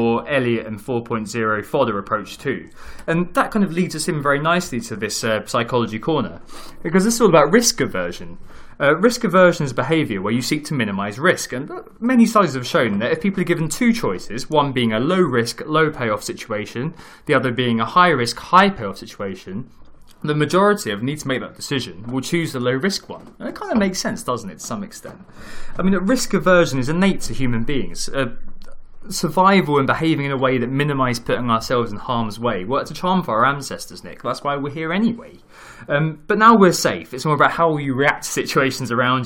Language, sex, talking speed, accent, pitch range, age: English, male, 220 wpm, British, 130-175 Hz, 20-39